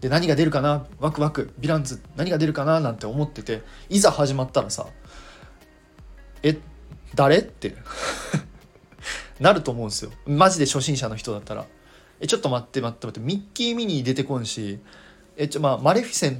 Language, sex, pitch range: Japanese, male, 110-175 Hz